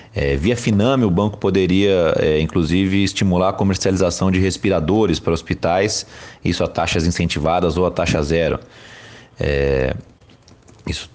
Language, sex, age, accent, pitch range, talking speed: Portuguese, male, 30-49, Brazilian, 80-95 Hz, 120 wpm